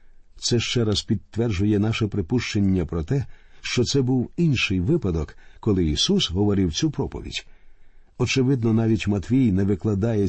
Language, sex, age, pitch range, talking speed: Ukrainian, male, 50-69, 100-125 Hz, 135 wpm